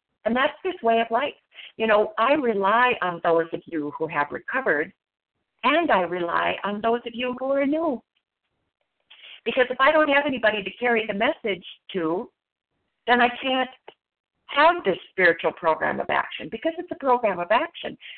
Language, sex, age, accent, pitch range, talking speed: English, female, 50-69, American, 195-275 Hz, 175 wpm